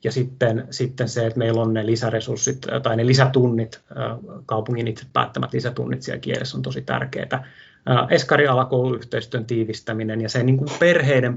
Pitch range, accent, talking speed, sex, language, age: 115-130 Hz, native, 145 wpm, male, Finnish, 30-49